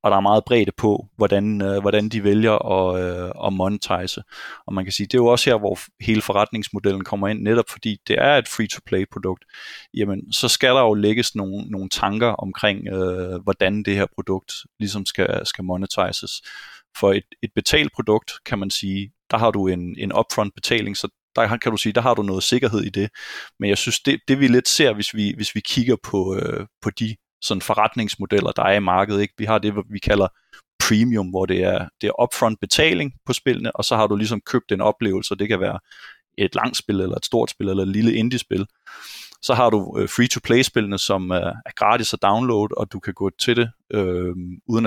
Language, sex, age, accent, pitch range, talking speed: Danish, male, 20-39, native, 95-115 Hz, 205 wpm